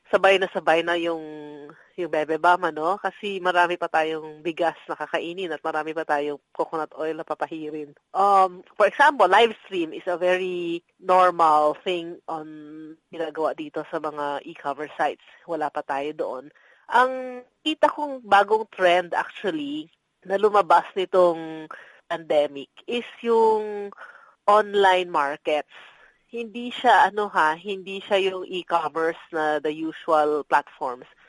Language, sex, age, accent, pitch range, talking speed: Filipino, female, 20-39, native, 155-210 Hz, 130 wpm